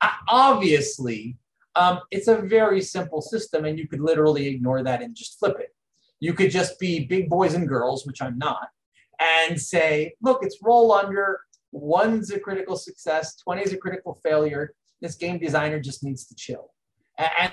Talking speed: 175 wpm